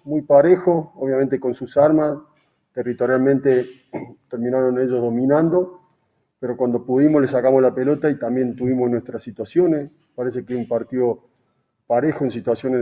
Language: Spanish